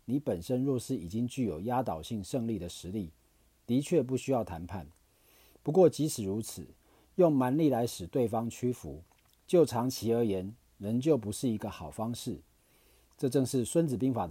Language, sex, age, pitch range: Chinese, male, 40-59, 100-135 Hz